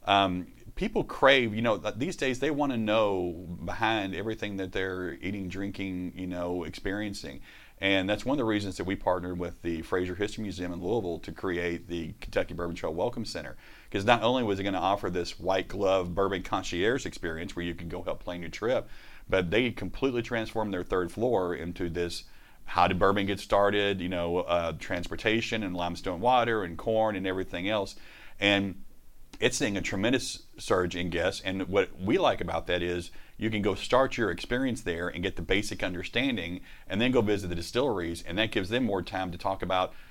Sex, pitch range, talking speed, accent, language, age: male, 90-100 Hz, 200 wpm, American, English, 40-59